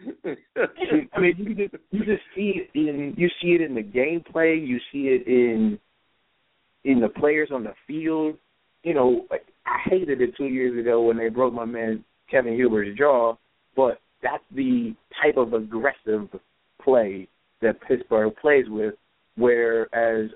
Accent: American